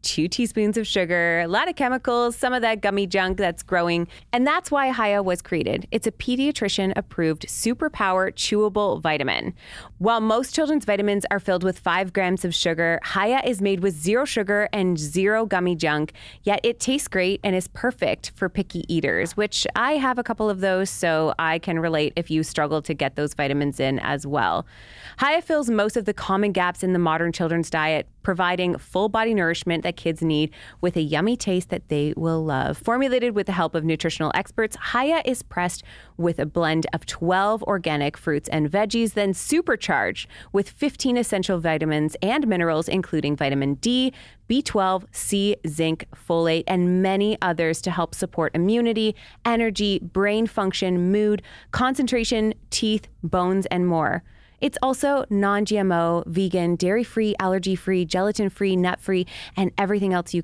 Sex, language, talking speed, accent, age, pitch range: female, English, 165 wpm, American, 20-39, 165-215 Hz